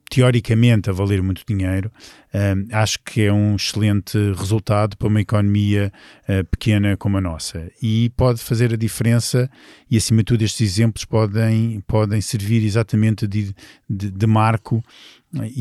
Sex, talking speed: male, 155 wpm